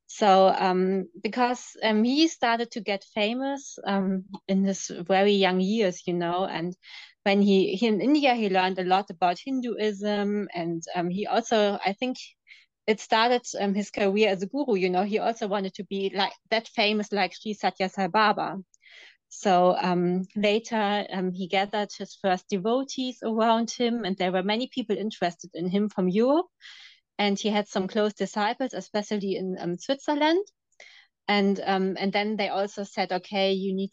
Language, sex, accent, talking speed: English, female, German, 175 wpm